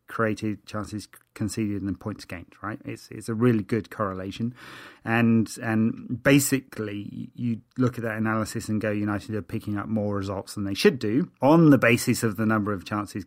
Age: 30-49